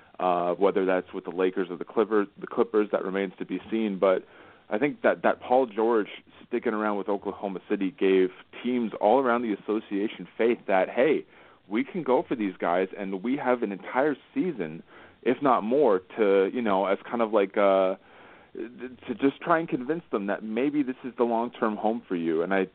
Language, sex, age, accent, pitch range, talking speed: English, male, 30-49, American, 95-120 Hz, 205 wpm